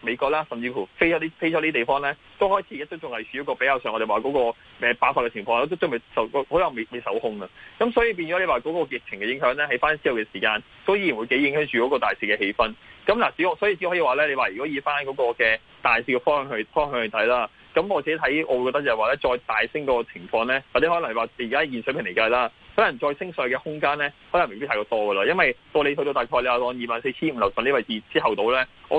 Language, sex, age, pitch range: Chinese, male, 20-39, 120-165 Hz